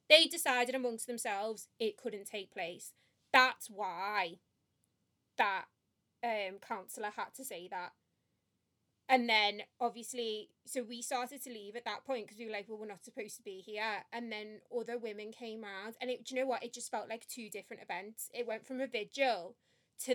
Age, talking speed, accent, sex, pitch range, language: 20-39, 190 wpm, British, female, 205-250 Hz, English